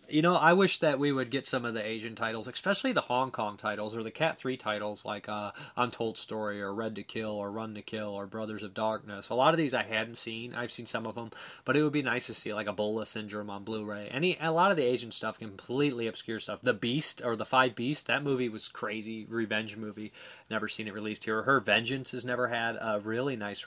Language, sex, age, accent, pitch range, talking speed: English, male, 30-49, American, 105-135 Hz, 250 wpm